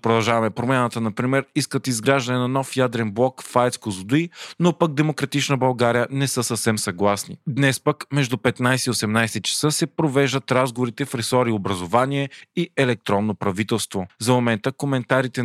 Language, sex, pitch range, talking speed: Bulgarian, male, 115-140 Hz, 150 wpm